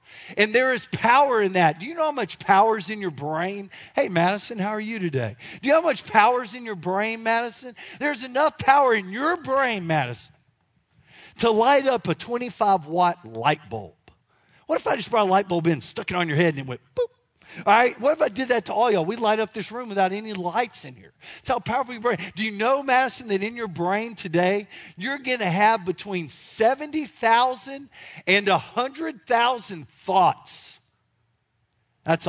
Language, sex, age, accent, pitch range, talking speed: English, male, 50-69, American, 165-240 Hz, 210 wpm